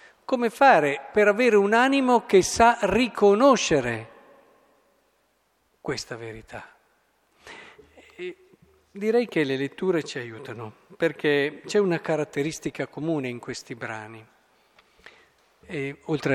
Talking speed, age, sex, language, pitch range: 95 wpm, 50-69, male, Italian, 130-190 Hz